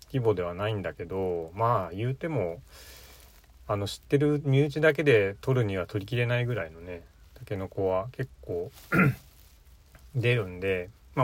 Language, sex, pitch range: Japanese, male, 80-120 Hz